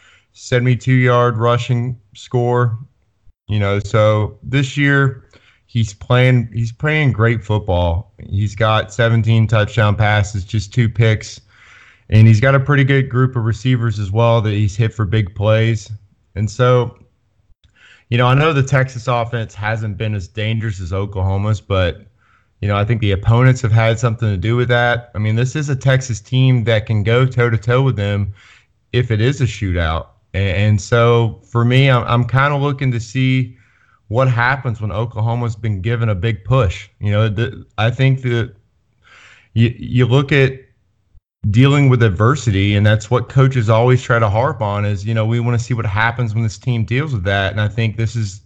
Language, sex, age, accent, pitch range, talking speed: English, male, 30-49, American, 105-120 Hz, 180 wpm